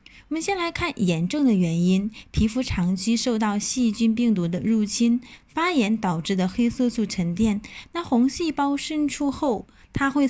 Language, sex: Chinese, female